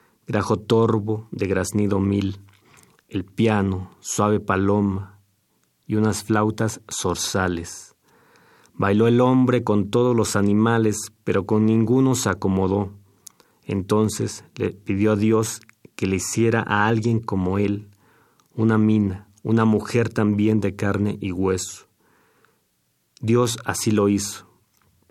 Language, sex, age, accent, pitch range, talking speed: Spanish, male, 40-59, Mexican, 95-110 Hz, 120 wpm